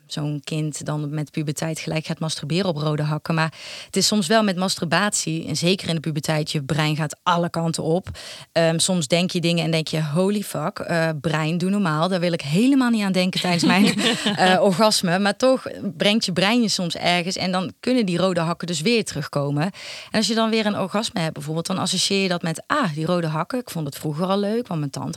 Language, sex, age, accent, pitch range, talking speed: Dutch, female, 30-49, Dutch, 160-195 Hz, 235 wpm